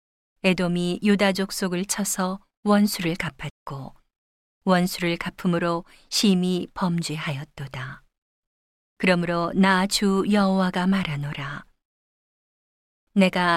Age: 40-59